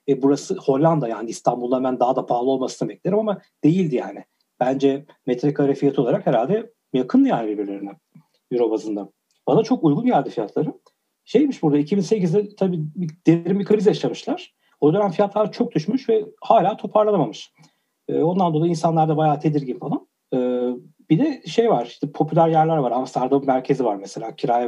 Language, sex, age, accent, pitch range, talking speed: Turkish, male, 40-59, native, 130-185 Hz, 160 wpm